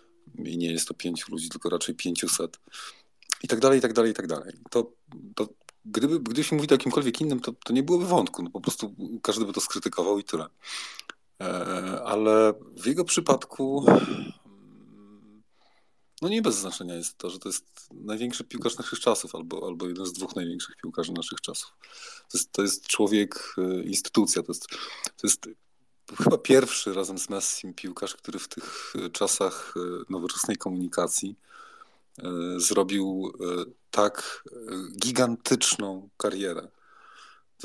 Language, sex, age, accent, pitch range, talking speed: Polish, male, 30-49, native, 95-120 Hz, 145 wpm